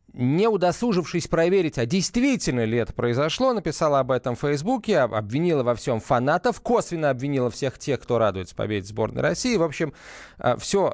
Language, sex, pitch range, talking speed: Russian, male, 120-170 Hz, 160 wpm